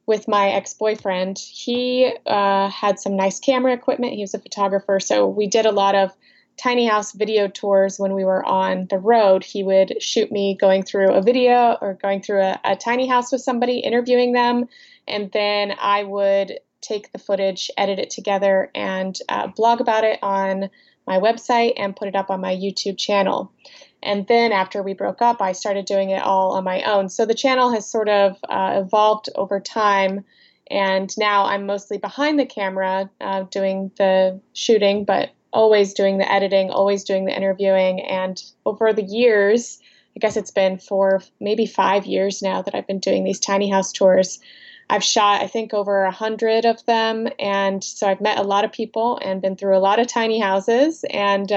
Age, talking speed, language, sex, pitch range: 20-39, 195 wpm, English, female, 195-225 Hz